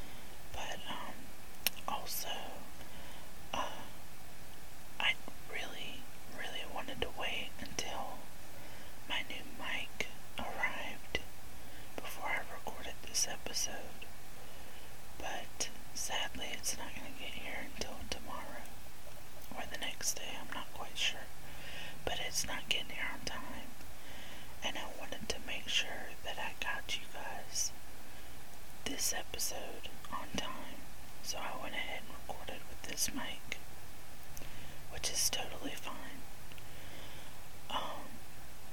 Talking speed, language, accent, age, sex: 110 wpm, English, American, 20-39, male